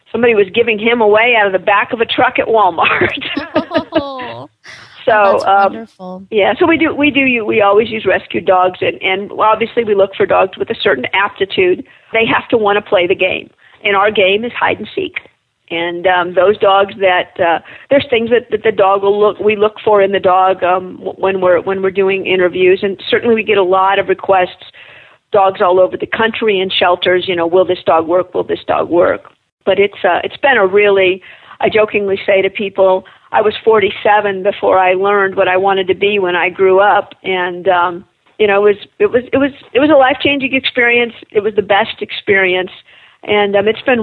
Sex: female